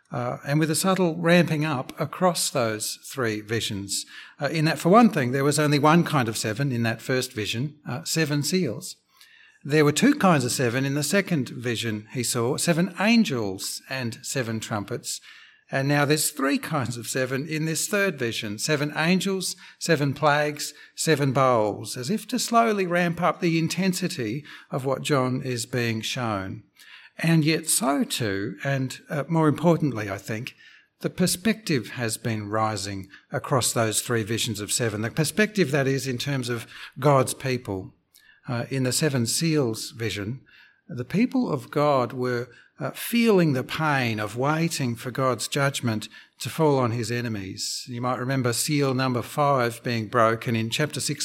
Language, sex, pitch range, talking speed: English, male, 120-160 Hz, 170 wpm